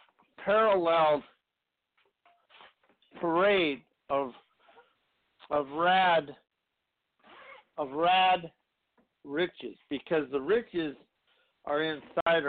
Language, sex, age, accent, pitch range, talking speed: English, male, 60-79, American, 150-190 Hz, 60 wpm